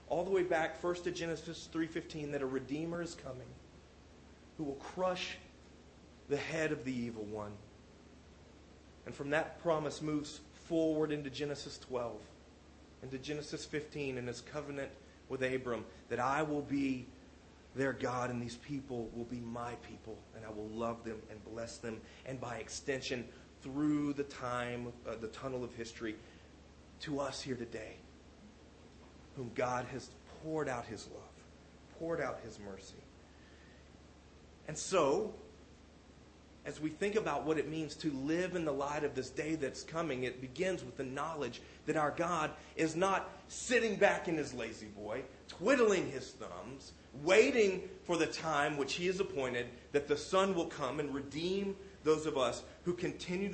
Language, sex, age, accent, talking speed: English, male, 30-49, American, 165 wpm